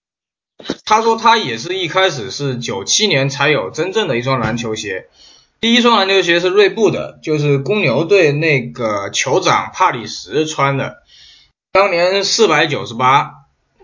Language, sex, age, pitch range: Chinese, male, 20-39, 130-175 Hz